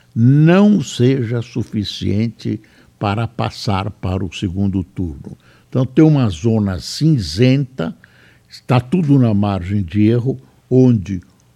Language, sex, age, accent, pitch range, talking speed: Portuguese, male, 60-79, Brazilian, 100-140 Hz, 110 wpm